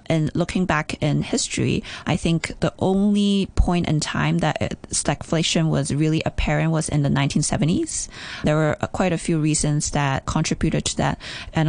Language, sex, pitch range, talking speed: English, female, 155-175 Hz, 165 wpm